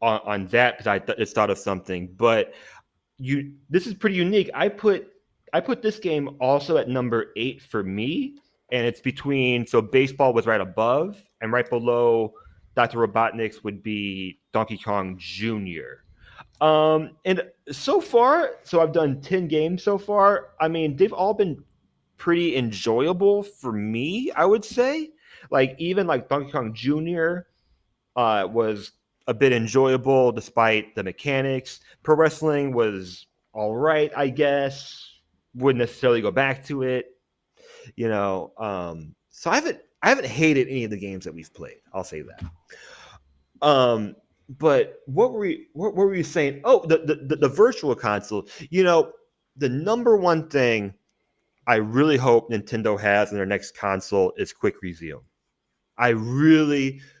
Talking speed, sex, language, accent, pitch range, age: 155 wpm, male, English, American, 110-165 Hz, 30-49